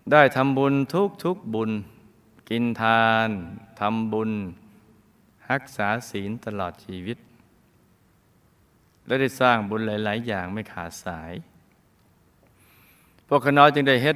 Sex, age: male, 20-39